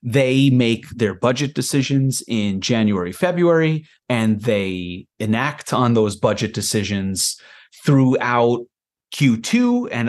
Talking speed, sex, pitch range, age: 105 wpm, male, 110-145 Hz, 30-49